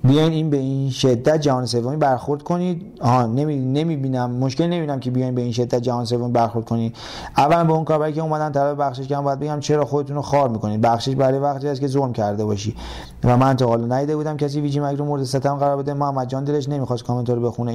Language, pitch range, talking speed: Persian, 120-150 Hz, 235 wpm